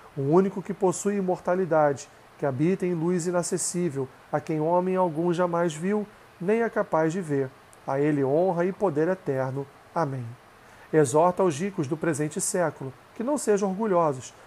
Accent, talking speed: Brazilian, 160 wpm